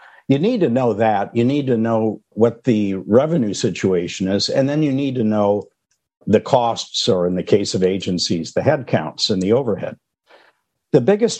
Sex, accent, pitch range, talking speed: male, American, 100-125 Hz, 185 wpm